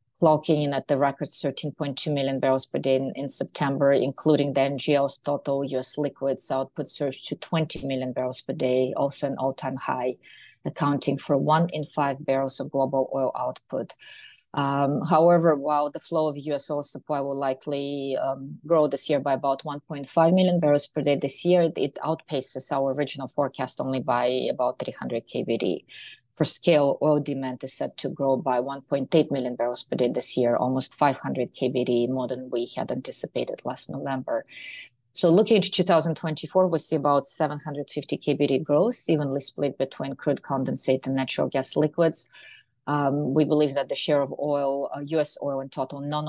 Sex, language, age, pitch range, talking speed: female, English, 30-49, 130-150 Hz, 175 wpm